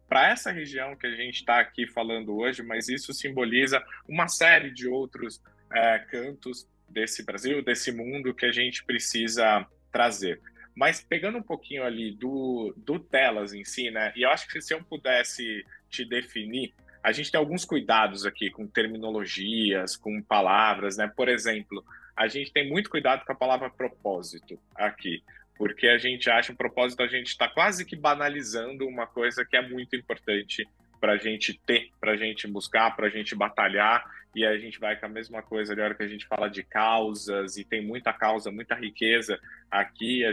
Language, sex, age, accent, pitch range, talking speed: Portuguese, male, 20-39, Brazilian, 105-130 Hz, 185 wpm